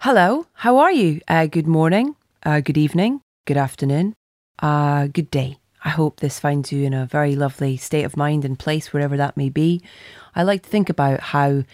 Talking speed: 200 wpm